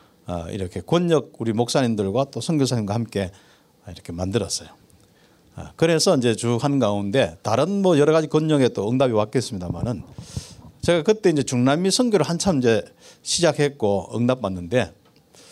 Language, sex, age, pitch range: Korean, male, 50-69, 115-185 Hz